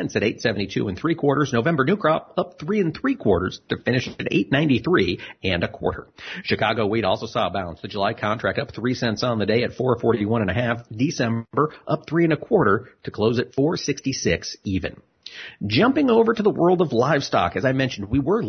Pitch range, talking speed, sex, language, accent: 110-150 Hz, 205 wpm, male, English, American